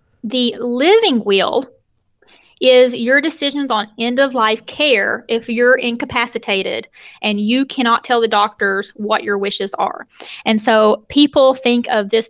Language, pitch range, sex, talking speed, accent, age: English, 220-255 Hz, female, 135 wpm, American, 20-39